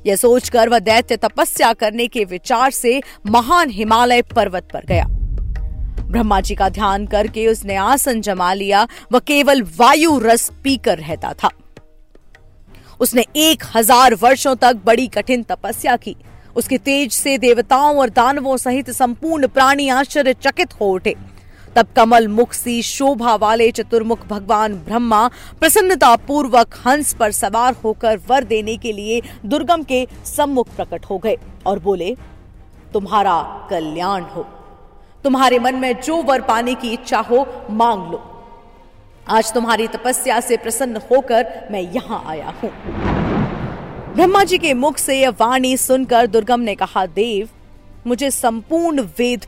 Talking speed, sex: 145 wpm, female